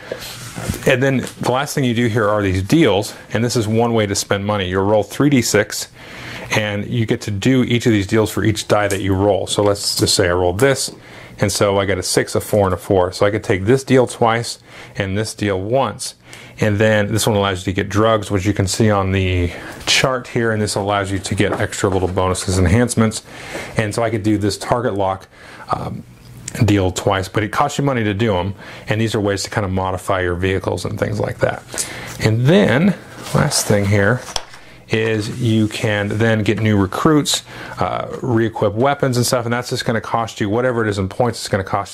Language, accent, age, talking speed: English, American, 30-49, 230 wpm